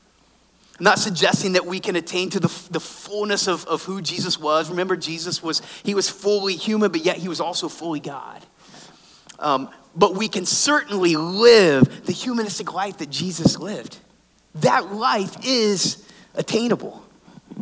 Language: English